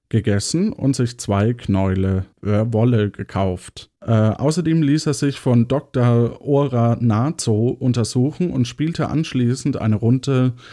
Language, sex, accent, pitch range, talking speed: German, male, German, 105-135 Hz, 130 wpm